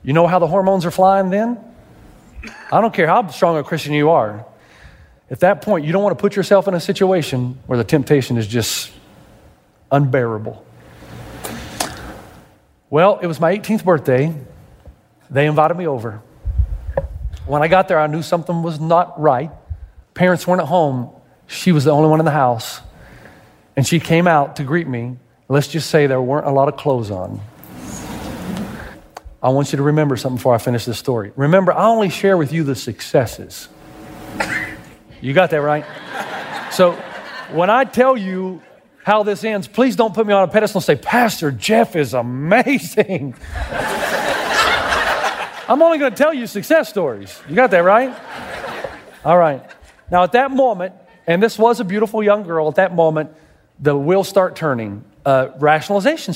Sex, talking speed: male, 170 wpm